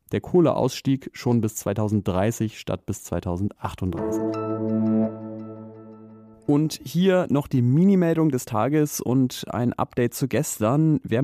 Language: German